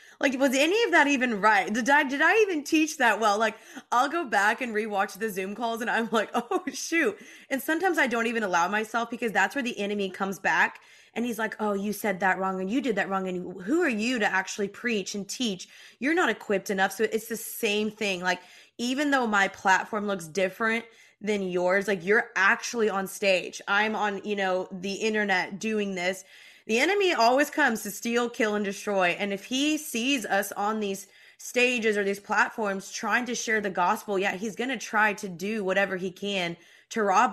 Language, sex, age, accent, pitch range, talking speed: English, female, 20-39, American, 200-255 Hz, 215 wpm